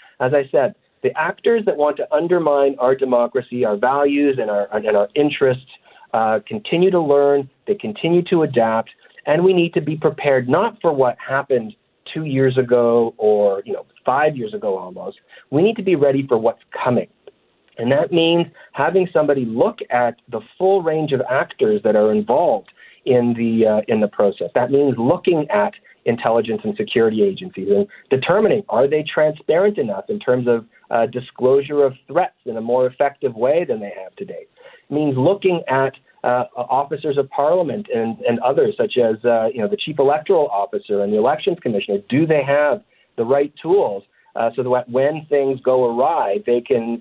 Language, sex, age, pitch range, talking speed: English, male, 40-59, 125-175 Hz, 185 wpm